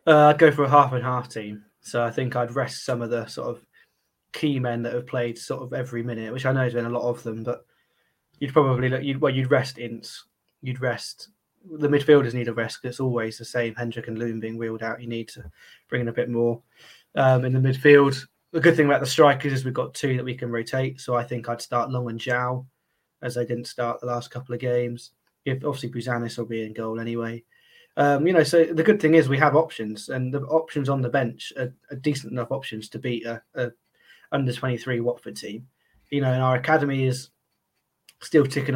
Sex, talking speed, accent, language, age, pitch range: male, 235 wpm, British, English, 20-39, 120-135 Hz